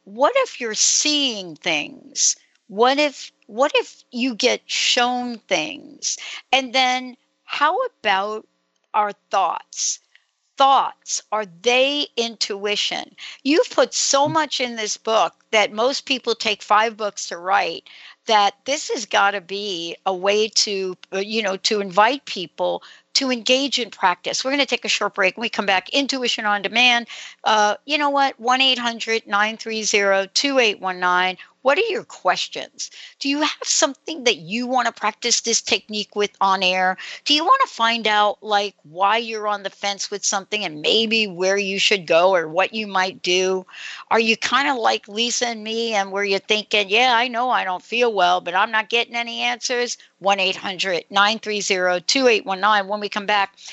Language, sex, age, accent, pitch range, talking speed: English, female, 60-79, American, 200-245 Hz, 175 wpm